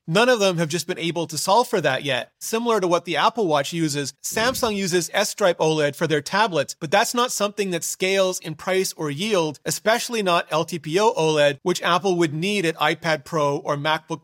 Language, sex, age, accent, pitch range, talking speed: English, male, 30-49, American, 155-200 Hz, 205 wpm